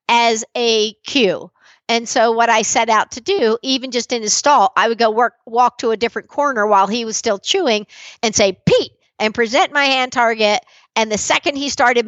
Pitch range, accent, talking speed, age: 205-255 Hz, American, 215 wpm, 50-69